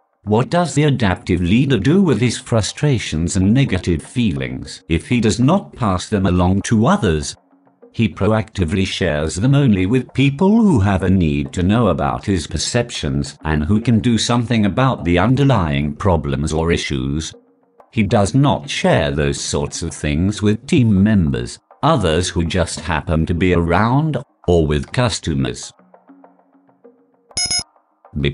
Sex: male